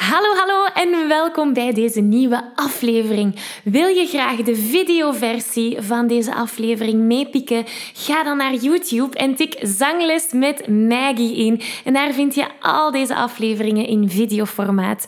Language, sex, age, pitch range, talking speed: Dutch, female, 10-29, 220-295 Hz, 145 wpm